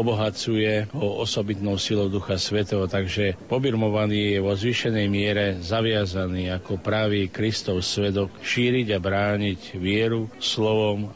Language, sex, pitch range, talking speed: Slovak, male, 95-110 Hz, 120 wpm